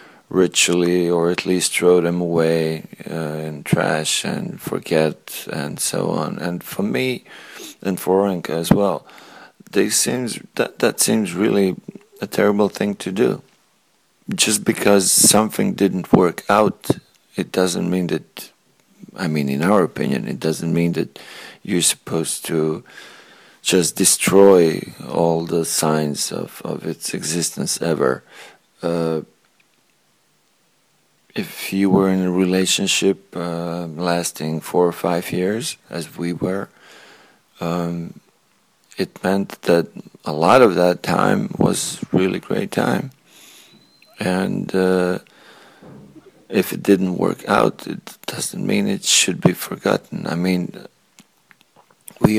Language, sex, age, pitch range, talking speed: English, male, 40-59, 85-95 Hz, 130 wpm